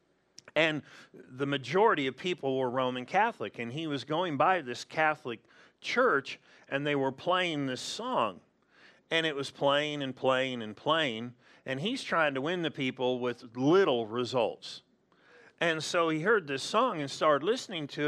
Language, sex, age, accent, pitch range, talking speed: English, male, 40-59, American, 130-165 Hz, 165 wpm